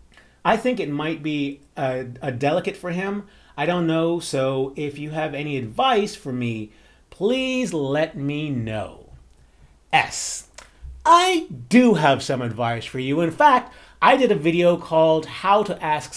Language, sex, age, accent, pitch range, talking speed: English, male, 40-59, American, 130-165 Hz, 160 wpm